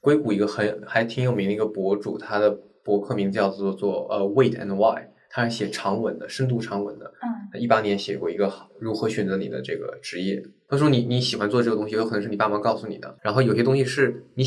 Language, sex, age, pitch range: Chinese, male, 20-39, 110-135 Hz